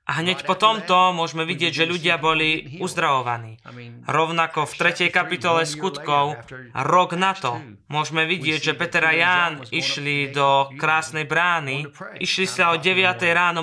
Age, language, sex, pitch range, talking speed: 20-39, Slovak, male, 145-175 Hz, 145 wpm